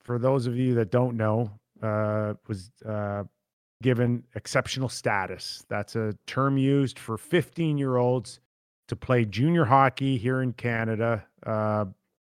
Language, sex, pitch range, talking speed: English, male, 110-135 Hz, 130 wpm